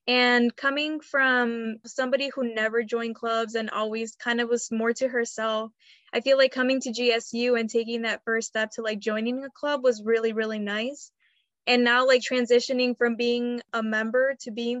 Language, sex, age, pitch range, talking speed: English, female, 20-39, 225-250 Hz, 185 wpm